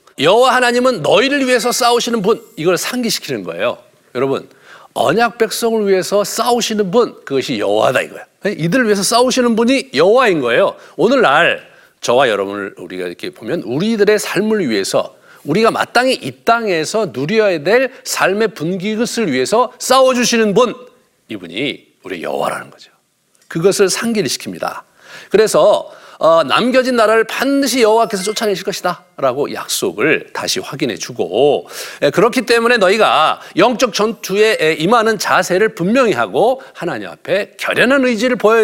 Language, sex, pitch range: Korean, male, 190-245 Hz